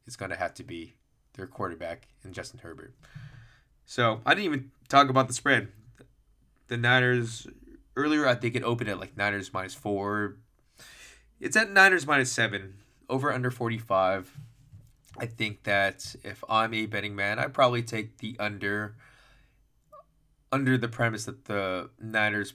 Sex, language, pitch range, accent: male, English, 100-125 Hz, American